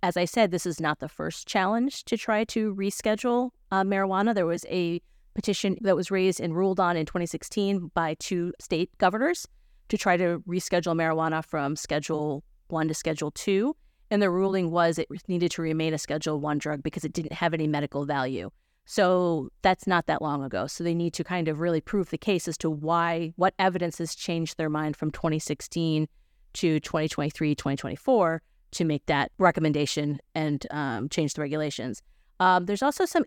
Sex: female